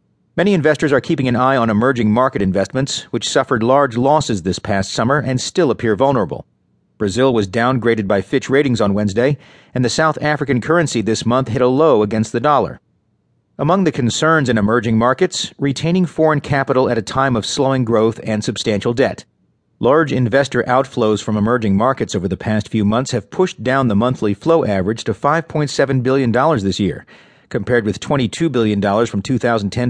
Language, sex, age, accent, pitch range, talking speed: English, male, 40-59, American, 110-140 Hz, 180 wpm